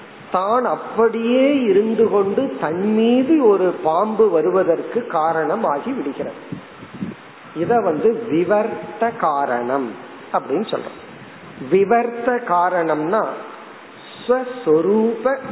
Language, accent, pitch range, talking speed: Tamil, native, 165-235 Hz, 50 wpm